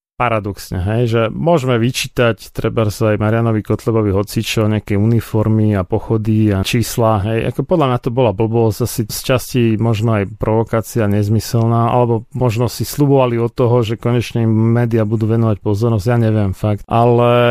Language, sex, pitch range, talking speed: Slovak, male, 110-125 Hz, 160 wpm